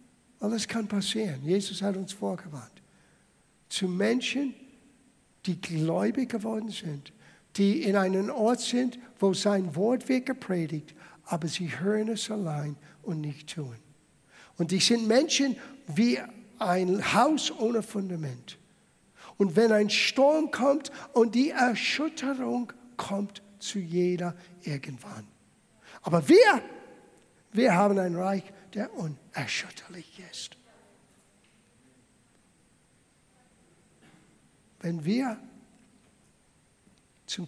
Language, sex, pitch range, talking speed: German, male, 170-235 Hz, 100 wpm